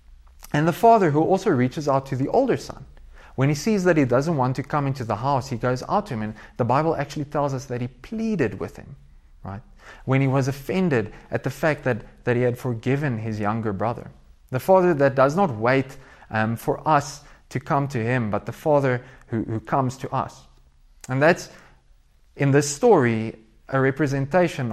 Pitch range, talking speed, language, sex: 115-150 Hz, 200 wpm, English, male